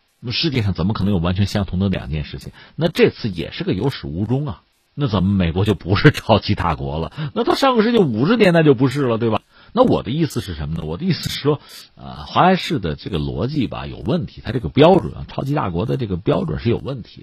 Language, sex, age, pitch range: Chinese, male, 50-69, 95-155 Hz